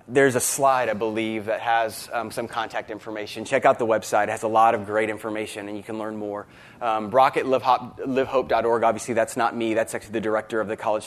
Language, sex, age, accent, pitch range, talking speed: English, male, 20-39, American, 105-130 Hz, 230 wpm